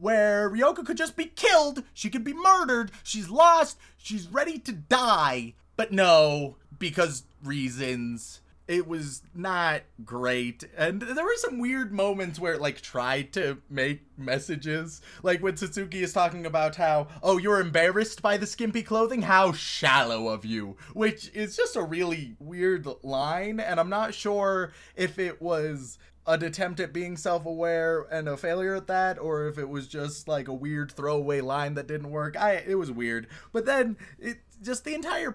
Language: English